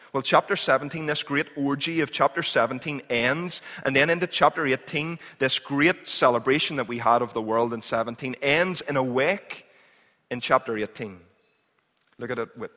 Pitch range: 130-160 Hz